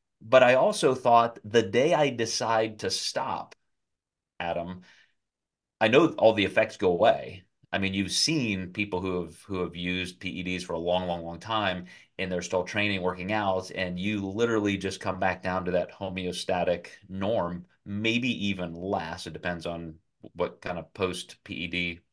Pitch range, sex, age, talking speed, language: 90-110 Hz, male, 30-49, 170 wpm, English